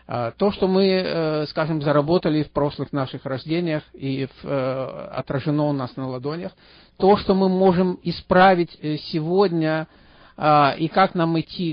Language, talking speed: Russian, 135 wpm